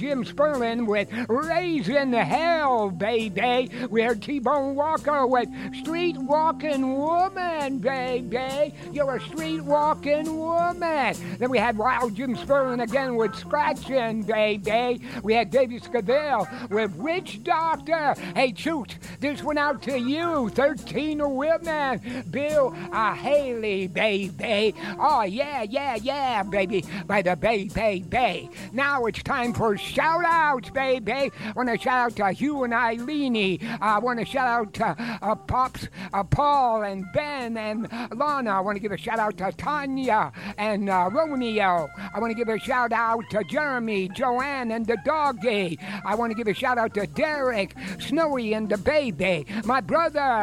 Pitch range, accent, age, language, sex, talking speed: 215-285 Hz, American, 60-79, English, male, 150 wpm